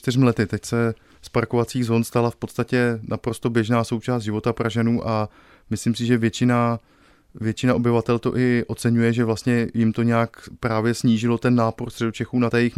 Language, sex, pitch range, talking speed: Czech, male, 110-120 Hz, 175 wpm